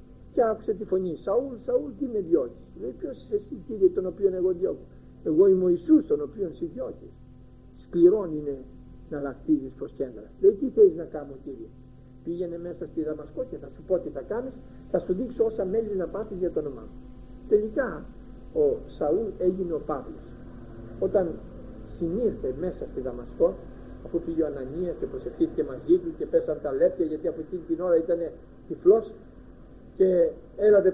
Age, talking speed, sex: 50-69, 180 wpm, male